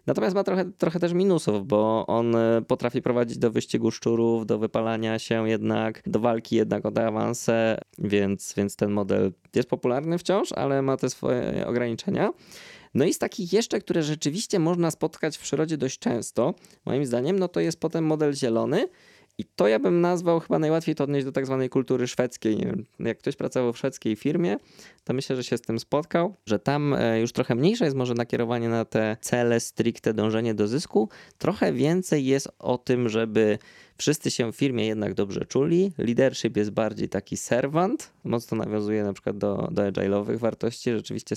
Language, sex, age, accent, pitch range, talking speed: Polish, male, 20-39, native, 110-140 Hz, 185 wpm